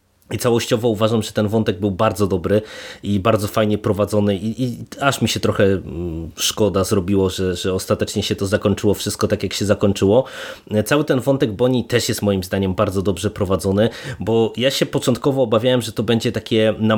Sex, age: male, 20-39